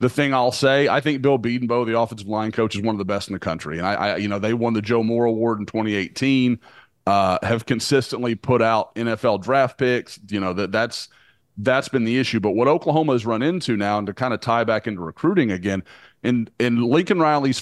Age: 30-49